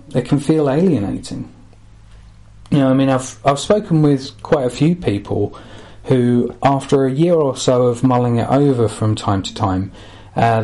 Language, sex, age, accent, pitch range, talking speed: English, male, 40-59, British, 105-135 Hz, 175 wpm